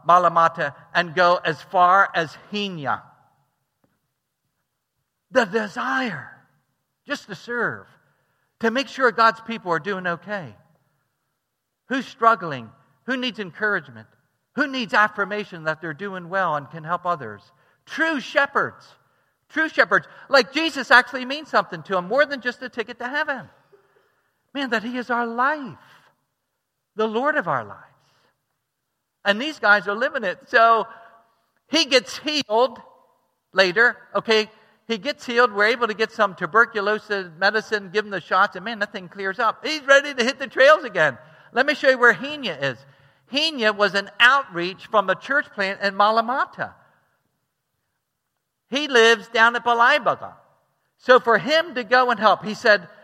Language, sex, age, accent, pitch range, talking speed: English, male, 50-69, American, 170-245 Hz, 155 wpm